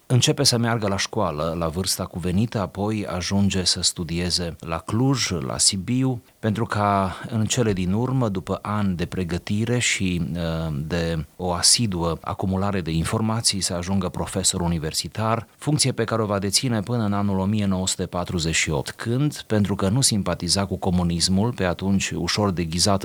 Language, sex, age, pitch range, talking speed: Romanian, male, 30-49, 85-105 Hz, 150 wpm